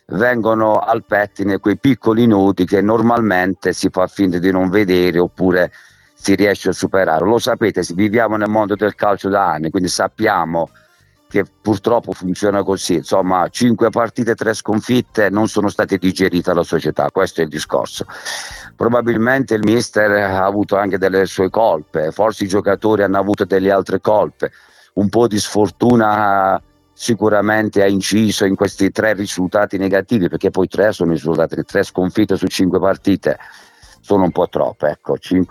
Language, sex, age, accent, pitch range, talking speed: Italian, male, 50-69, native, 95-110 Hz, 160 wpm